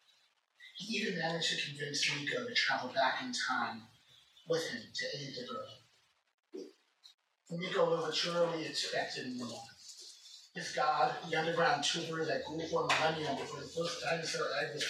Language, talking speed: English, 155 wpm